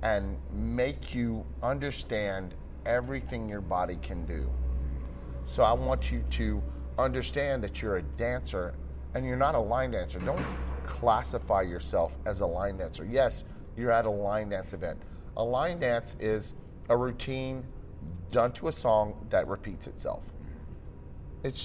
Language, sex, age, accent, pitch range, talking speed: English, male, 30-49, American, 80-120 Hz, 145 wpm